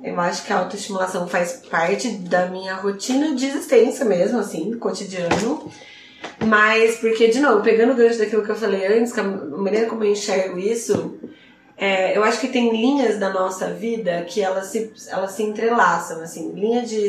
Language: Portuguese